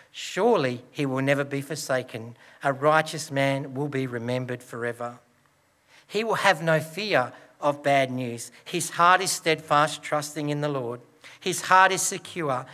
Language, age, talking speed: English, 60-79, 155 wpm